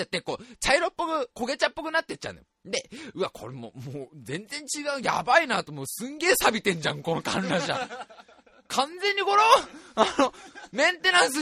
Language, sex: Japanese, male